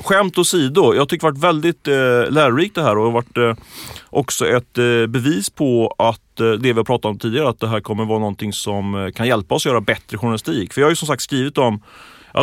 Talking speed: 250 wpm